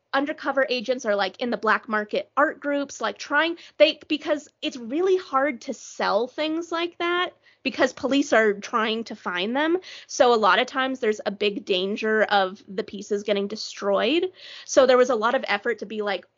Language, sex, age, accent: English, female, 30-49, American